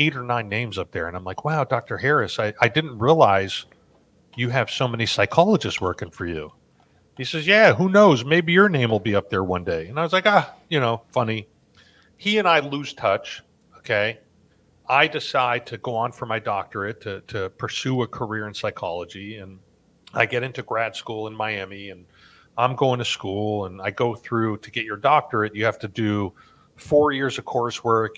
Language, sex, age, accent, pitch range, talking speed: English, male, 40-59, American, 105-135 Hz, 205 wpm